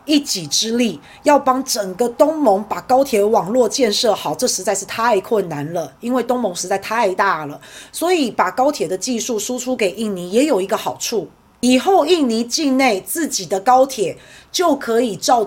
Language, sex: Chinese, female